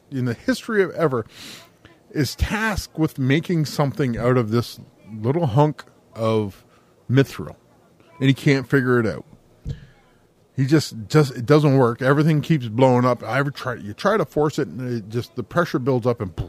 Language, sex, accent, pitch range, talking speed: English, male, American, 120-155 Hz, 185 wpm